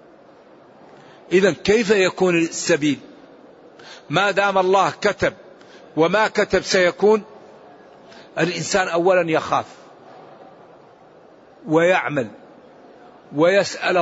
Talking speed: 70 wpm